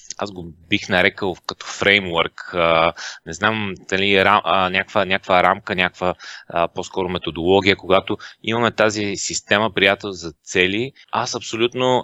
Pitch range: 95-115 Hz